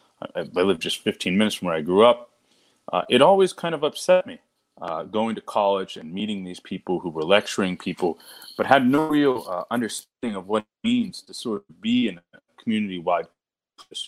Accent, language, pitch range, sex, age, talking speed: American, English, 90-130 Hz, male, 30-49, 200 wpm